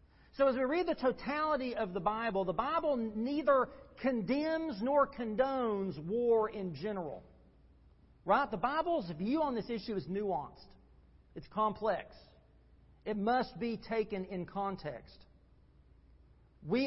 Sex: male